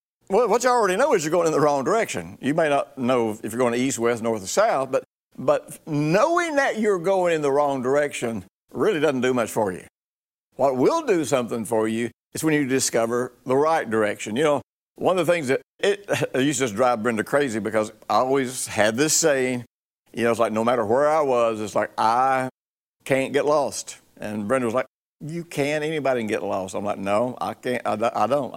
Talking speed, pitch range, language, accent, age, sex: 225 wpm, 115-145 Hz, English, American, 60-79, male